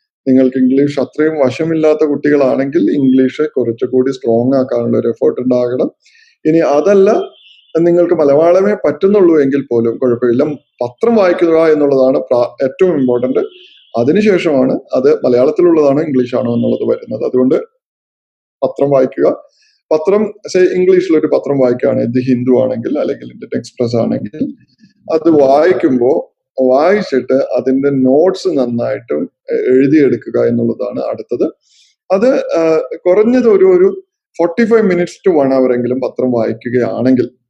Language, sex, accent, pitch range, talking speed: Malayalam, male, native, 130-210 Hz, 105 wpm